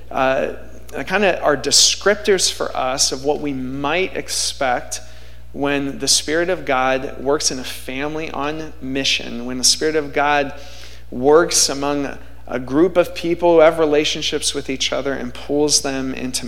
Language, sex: English, male